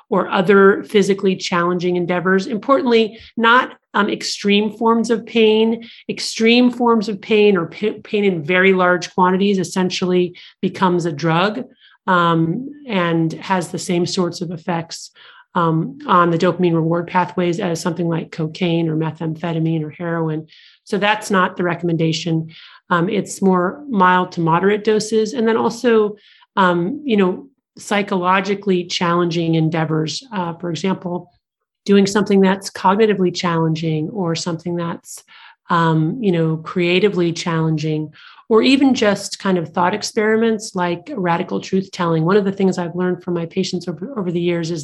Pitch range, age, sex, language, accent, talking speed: 170-210 Hz, 30-49, male, English, American, 145 wpm